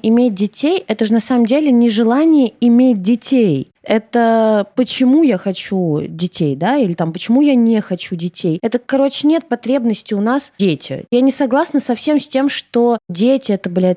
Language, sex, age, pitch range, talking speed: Russian, female, 20-39, 205-270 Hz, 180 wpm